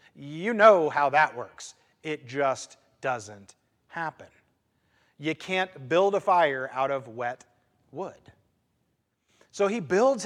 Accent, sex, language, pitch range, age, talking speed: American, male, English, 120-180 Hz, 30-49, 125 wpm